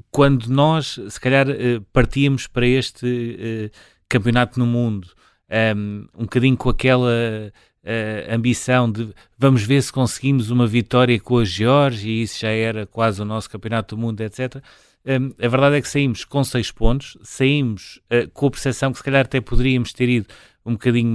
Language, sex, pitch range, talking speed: Portuguese, male, 110-125 Hz, 165 wpm